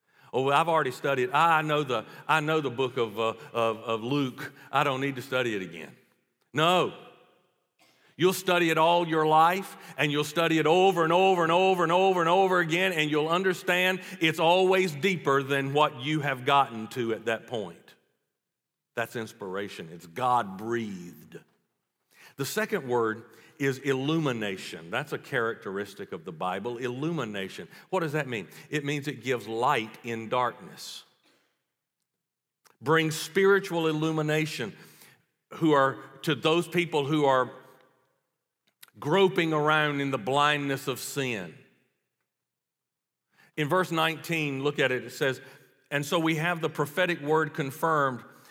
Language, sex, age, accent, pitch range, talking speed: English, male, 50-69, American, 130-165 Hz, 145 wpm